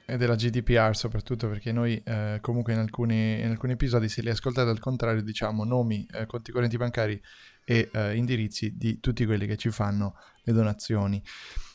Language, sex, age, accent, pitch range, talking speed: Italian, male, 20-39, native, 110-130 Hz, 175 wpm